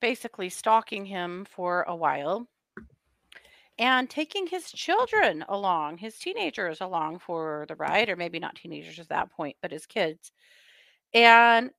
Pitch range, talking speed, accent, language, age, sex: 170-245 Hz, 145 wpm, American, English, 30-49, female